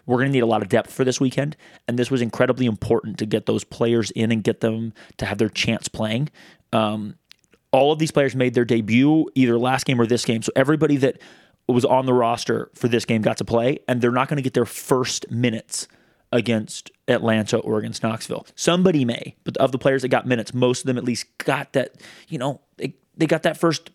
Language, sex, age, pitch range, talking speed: English, male, 30-49, 115-135 Hz, 230 wpm